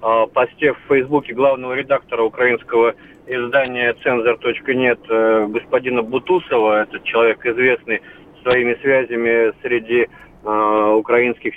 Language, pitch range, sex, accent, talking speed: Russian, 105-125 Hz, male, native, 95 wpm